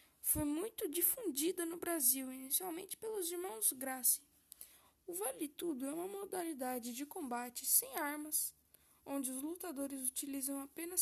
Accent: Brazilian